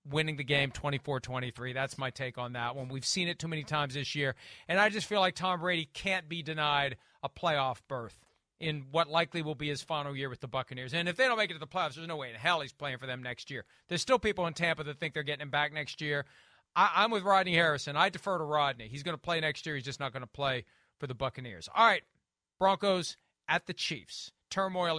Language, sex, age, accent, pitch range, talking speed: English, male, 40-59, American, 135-170 Hz, 250 wpm